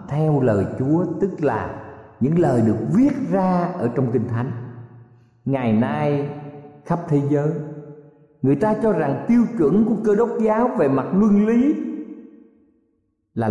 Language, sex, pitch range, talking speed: Vietnamese, male, 120-185 Hz, 150 wpm